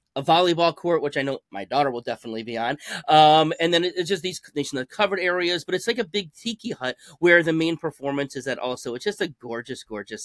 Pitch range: 135-170 Hz